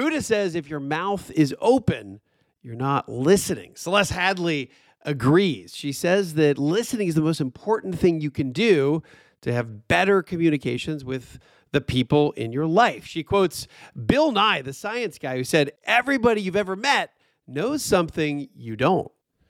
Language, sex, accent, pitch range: English, male, American, 145-205 Hz